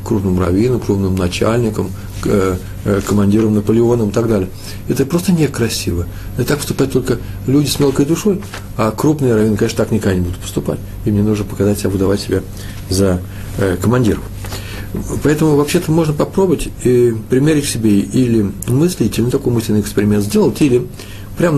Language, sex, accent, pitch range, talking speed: Russian, male, native, 100-130 Hz, 155 wpm